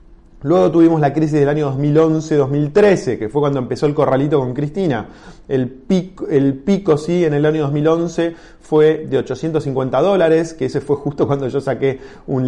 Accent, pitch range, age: Argentinian, 130-160 Hz, 20-39